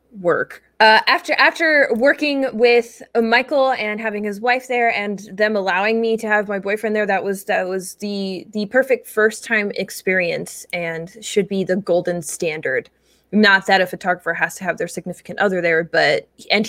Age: 20-39